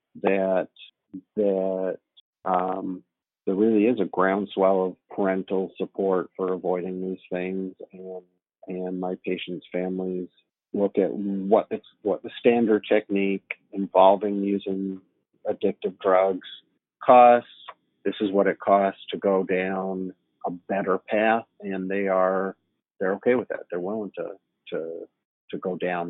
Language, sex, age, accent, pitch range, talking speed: English, male, 50-69, American, 95-105 Hz, 135 wpm